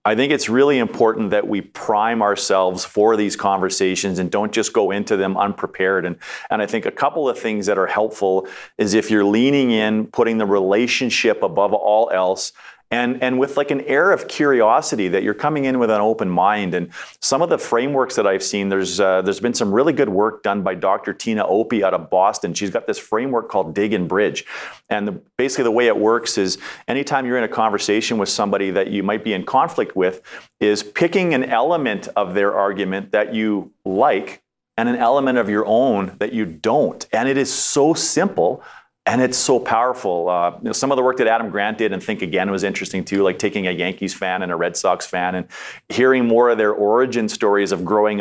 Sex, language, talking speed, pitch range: male, English, 220 wpm, 95-115 Hz